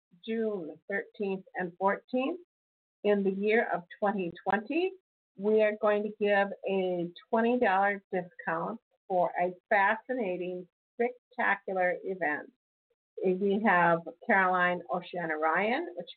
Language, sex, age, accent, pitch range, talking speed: English, female, 50-69, American, 180-220 Hz, 110 wpm